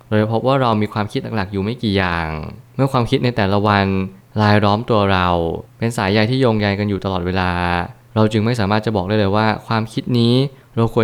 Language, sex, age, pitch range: Thai, male, 20-39, 100-125 Hz